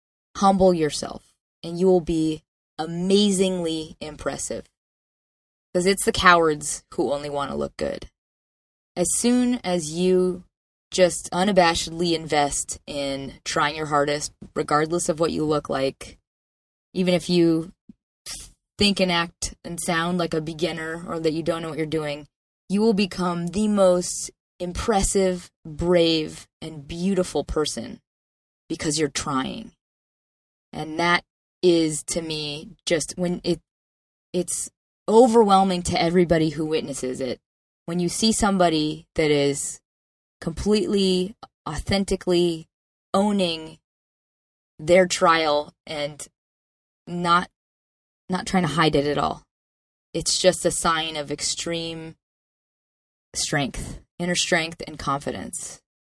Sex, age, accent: female, 20-39, American